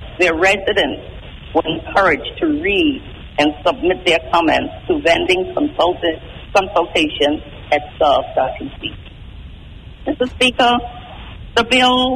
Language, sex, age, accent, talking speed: English, female, 50-69, American, 95 wpm